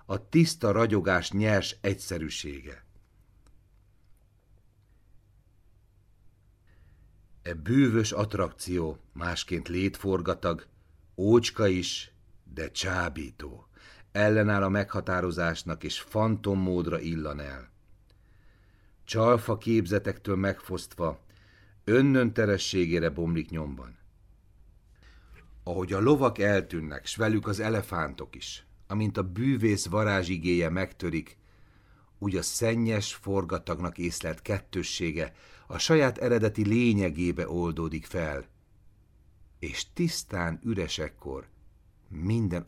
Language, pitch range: Hungarian, 85-105 Hz